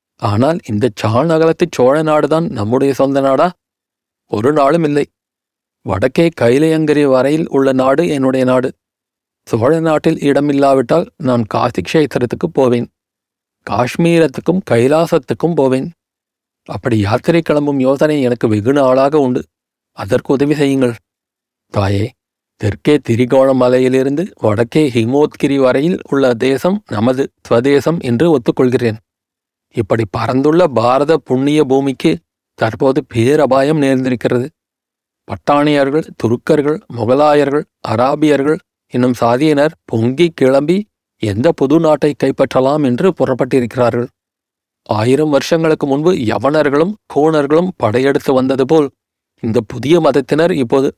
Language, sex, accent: Tamil, male, native